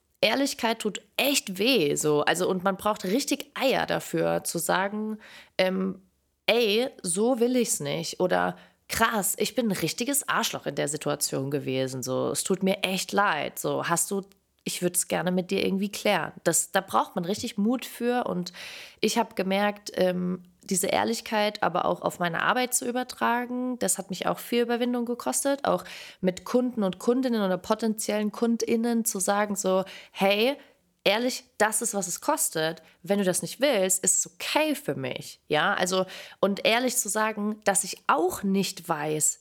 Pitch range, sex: 180-230 Hz, female